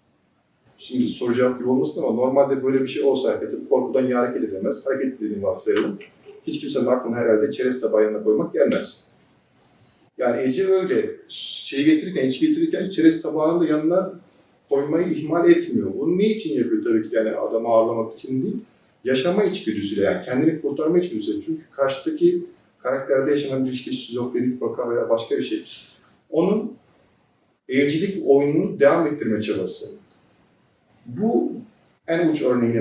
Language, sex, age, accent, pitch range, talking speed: Turkish, male, 40-59, native, 125-210 Hz, 140 wpm